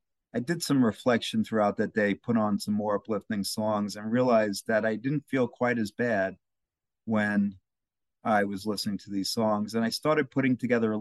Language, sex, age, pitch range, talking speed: English, male, 50-69, 100-120 Hz, 190 wpm